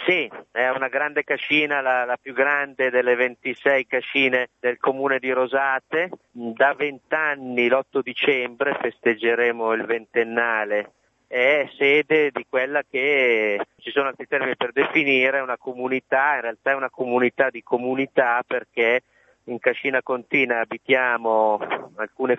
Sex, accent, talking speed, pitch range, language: male, native, 135 wpm, 110-130 Hz, Italian